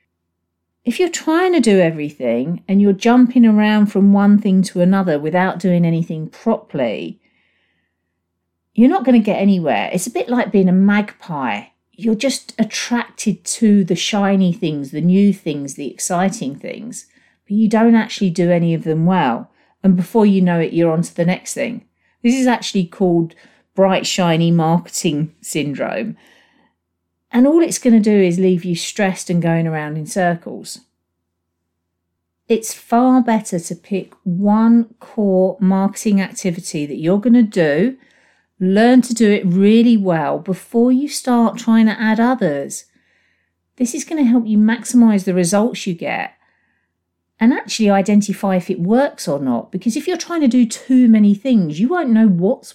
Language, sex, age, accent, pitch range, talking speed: English, female, 40-59, British, 170-230 Hz, 165 wpm